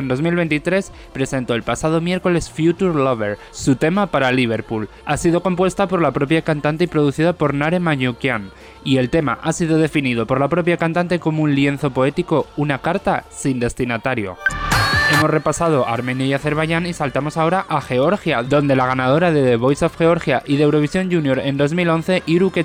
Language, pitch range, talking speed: Spanish, 135-175 Hz, 180 wpm